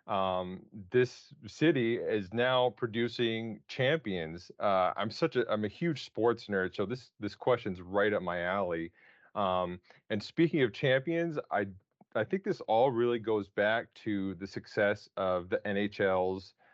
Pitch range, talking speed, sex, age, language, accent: 100-120 Hz, 155 wpm, male, 30-49, English, American